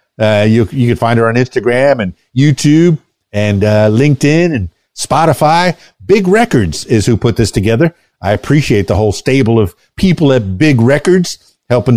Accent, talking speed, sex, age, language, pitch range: American, 165 wpm, male, 50-69, English, 105-135 Hz